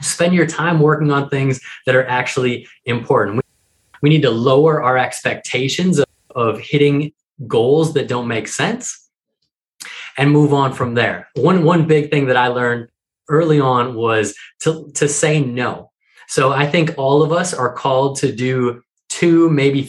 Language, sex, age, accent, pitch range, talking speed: English, male, 20-39, American, 125-155 Hz, 170 wpm